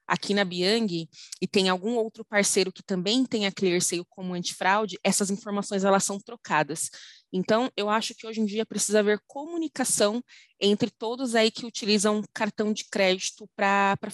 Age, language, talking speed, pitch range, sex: 20-39, Portuguese, 165 wpm, 180-220 Hz, female